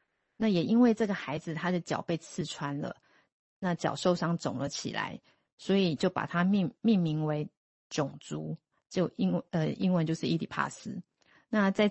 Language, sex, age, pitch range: Chinese, female, 30-49, 155-190 Hz